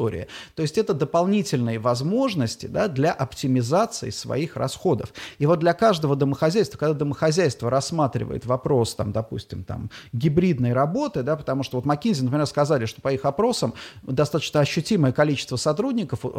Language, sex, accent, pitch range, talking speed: Russian, male, native, 130-180 Hz, 130 wpm